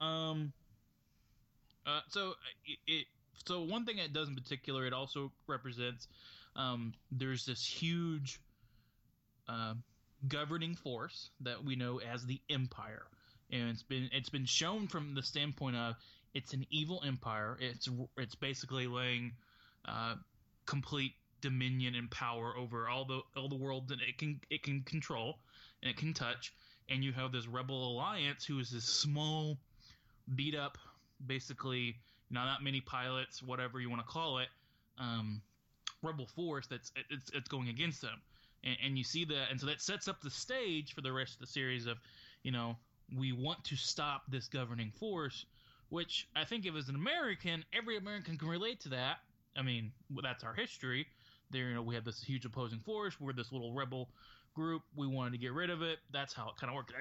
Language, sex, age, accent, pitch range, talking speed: English, male, 20-39, American, 120-145 Hz, 185 wpm